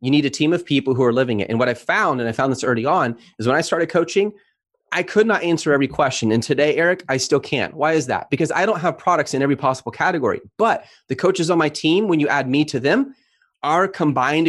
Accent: American